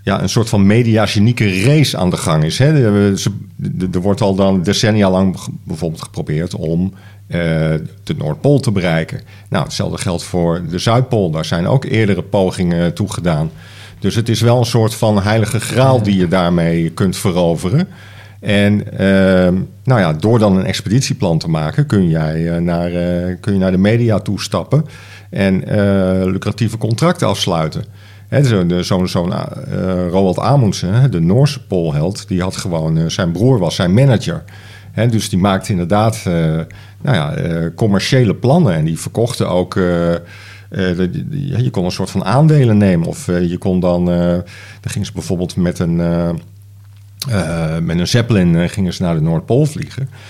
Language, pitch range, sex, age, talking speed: Dutch, 90-115 Hz, male, 50-69, 180 wpm